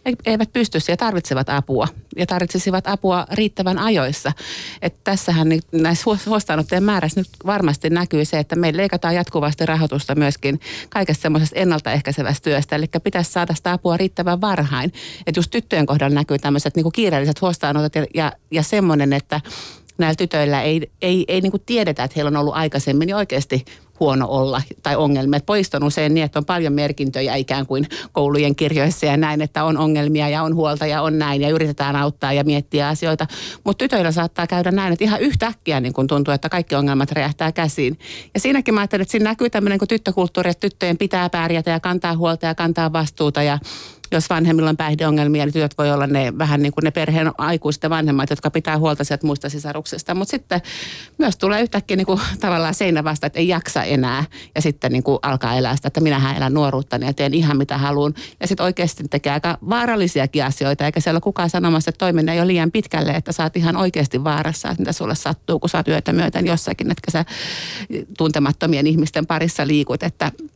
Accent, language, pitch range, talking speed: native, Finnish, 145-180 Hz, 185 wpm